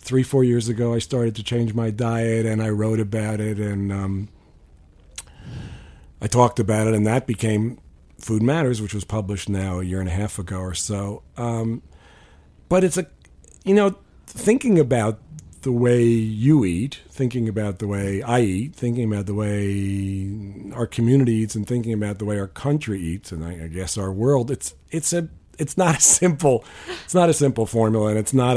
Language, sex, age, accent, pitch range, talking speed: English, male, 50-69, American, 95-120 Hz, 190 wpm